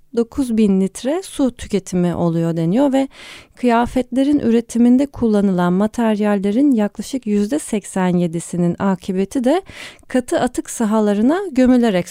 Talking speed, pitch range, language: 95 wpm, 195-255 Hz, Turkish